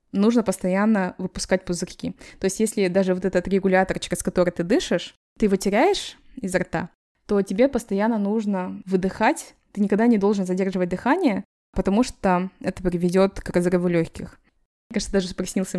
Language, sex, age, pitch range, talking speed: Russian, female, 20-39, 185-220 Hz, 160 wpm